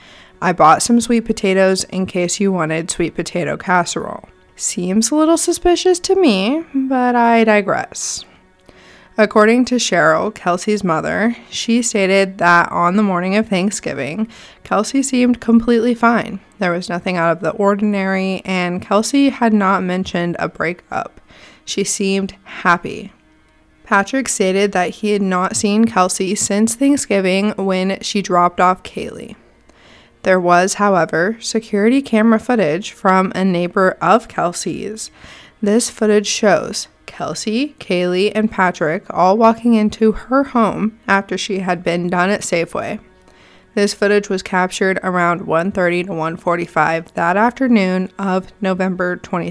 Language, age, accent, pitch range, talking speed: English, 20-39, American, 180-220 Hz, 135 wpm